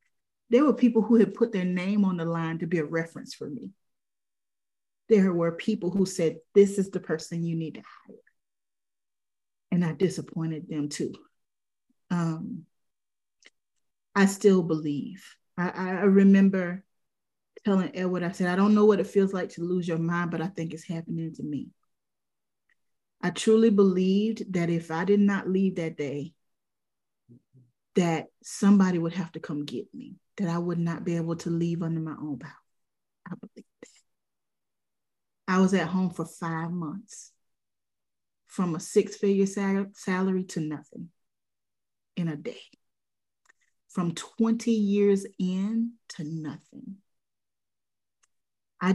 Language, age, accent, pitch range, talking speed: English, 30-49, American, 165-195 Hz, 150 wpm